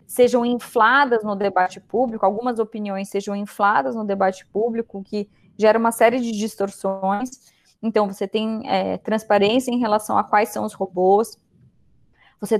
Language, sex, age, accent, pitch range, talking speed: Portuguese, female, 20-39, Brazilian, 195-245 Hz, 150 wpm